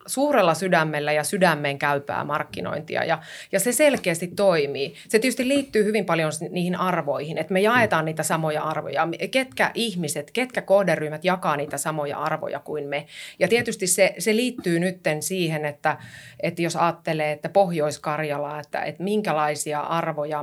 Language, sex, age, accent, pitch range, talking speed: Finnish, female, 30-49, native, 150-190 Hz, 150 wpm